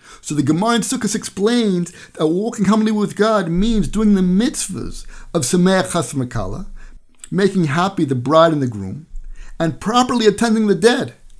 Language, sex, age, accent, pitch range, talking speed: English, male, 50-69, American, 135-205 Hz, 160 wpm